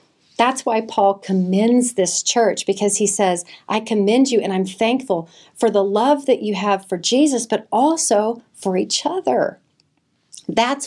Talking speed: 160 wpm